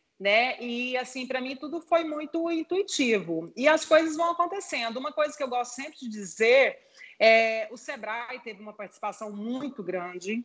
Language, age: Portuguese, 30-49